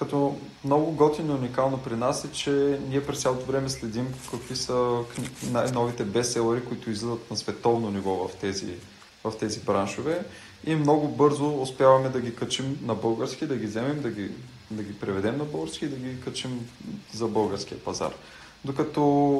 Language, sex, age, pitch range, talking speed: Bulgarian, male, 20-39, 110-135 Hz, 170 wpm